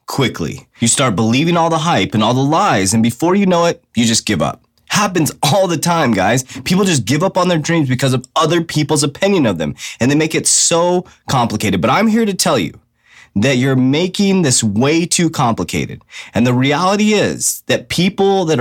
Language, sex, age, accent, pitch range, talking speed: English, male, 30-49, American, 115-180 Hz, 210 wpm